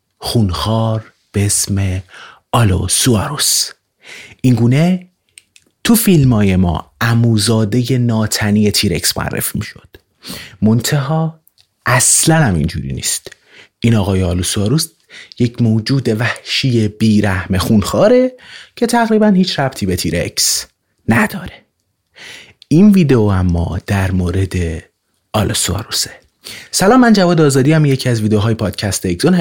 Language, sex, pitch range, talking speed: Persian, male, 105-145 Hz, 100 wpm